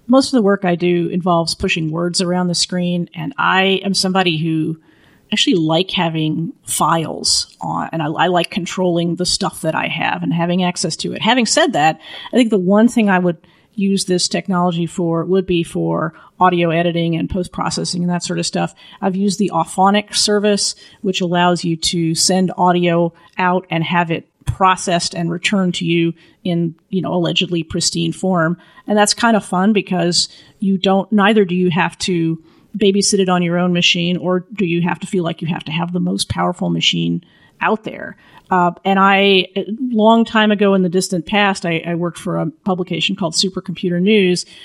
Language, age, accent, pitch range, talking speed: English, 40-59, American, 170-195 Hz, 195 wpm